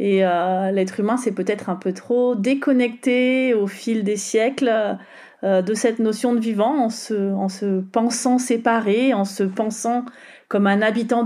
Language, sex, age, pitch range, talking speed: French, female, 30-49, 190-235 Hz, 170 wpm